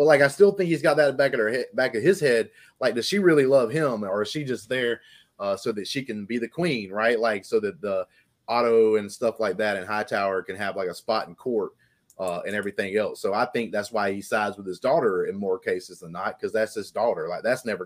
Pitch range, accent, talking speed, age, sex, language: 105-165 Hz, American, 270 wpm, 30-49, male, English